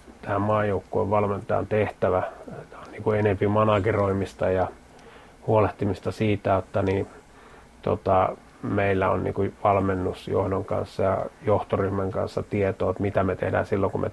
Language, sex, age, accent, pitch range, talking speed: Finnish, male, 30-49, native, 95-105 Hz, 125 wpm